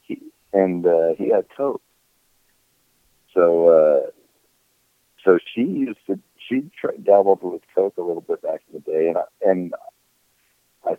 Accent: American